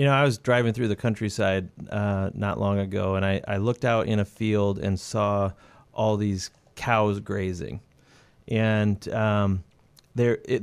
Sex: male